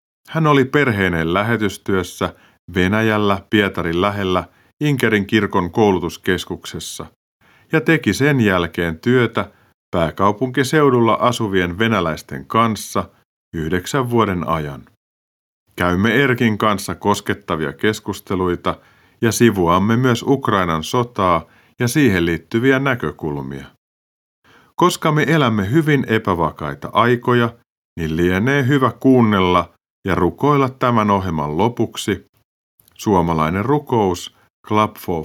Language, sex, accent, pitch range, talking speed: Finnish, male, native, 85-120 Hz, 95 wpm